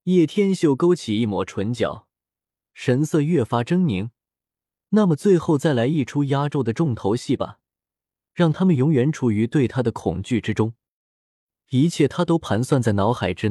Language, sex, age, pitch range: Chinese, male, 20-39, 115-170 Hz